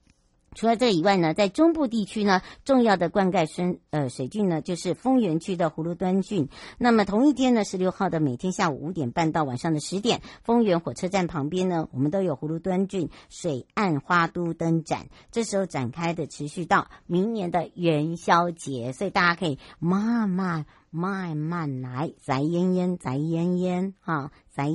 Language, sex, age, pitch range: Chinese, male, 60-79, 150-195 Hz